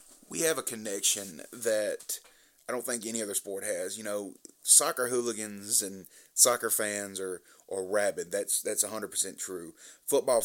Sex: male